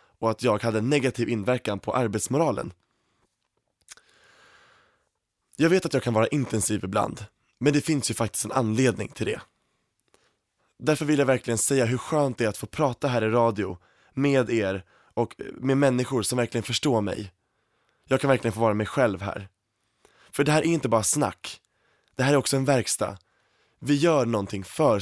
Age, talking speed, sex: 20-39, 180 wpm, male